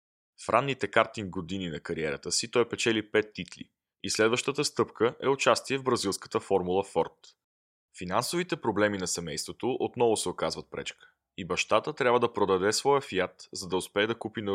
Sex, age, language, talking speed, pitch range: male, 20-39, Bulgarian, 175 wpm, 95-120 Hz